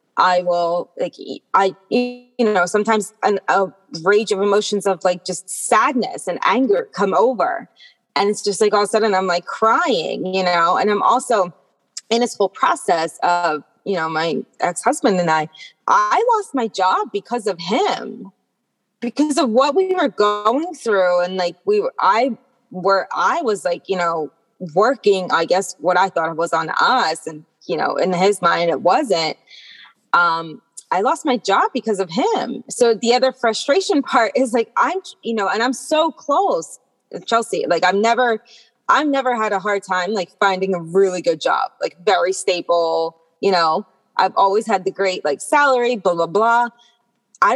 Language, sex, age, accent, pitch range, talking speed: English, female, 20-39, American, 185-245 Hz, 180 wpm